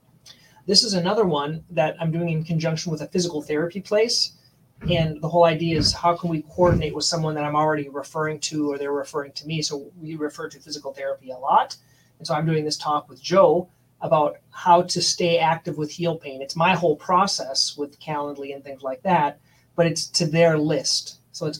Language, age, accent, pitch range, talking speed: English, 30-49, American, 150-175 Hz, 210 wpm